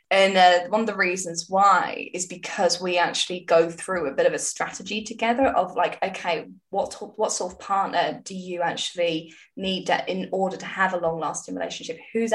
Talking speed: 195 wpm